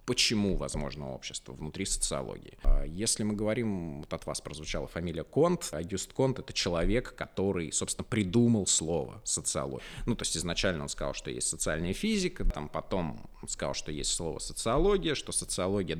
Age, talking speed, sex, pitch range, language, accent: 20-39, 165 wpm, male, 85-135 Hz, Russian, native